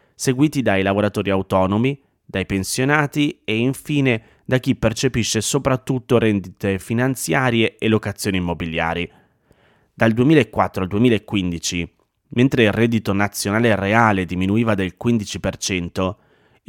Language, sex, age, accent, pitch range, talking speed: Italian, male, 30-49, native, 100-125 Hz, 105 wpm